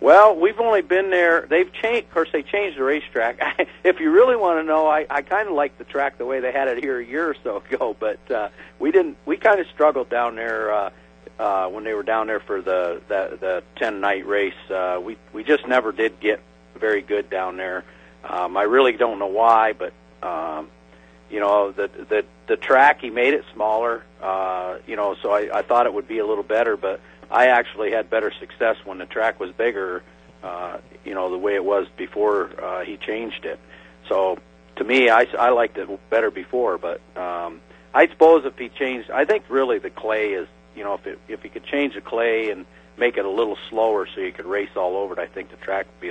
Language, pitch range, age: English, 90-155 Hz, 50-69